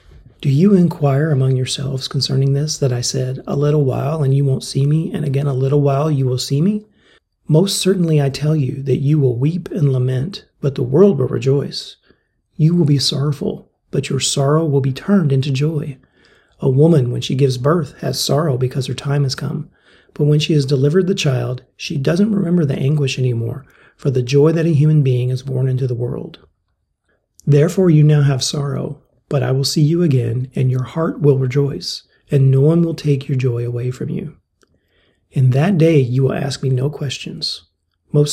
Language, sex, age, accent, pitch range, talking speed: English, male, 40-59, American, 130-155 Hz, 205 wpm